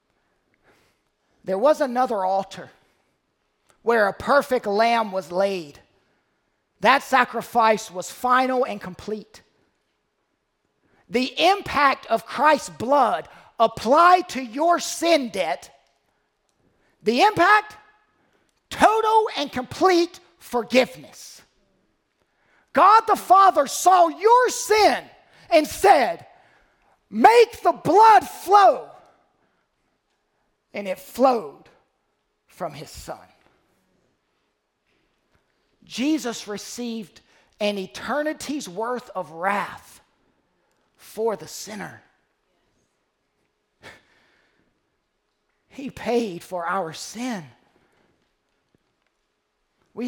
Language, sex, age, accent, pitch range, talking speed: English, male, 40-59, American, 210-320 Hz, 80 wpm